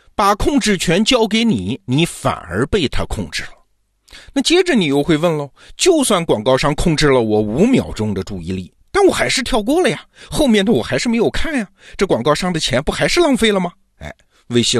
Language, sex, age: Chinese, male, 50-69